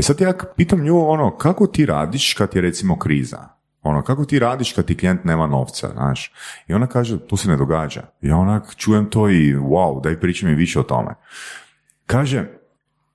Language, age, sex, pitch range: Croatian, 40-59, male, 70-105 Hz